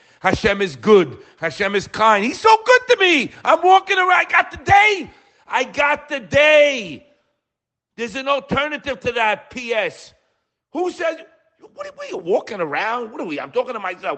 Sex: male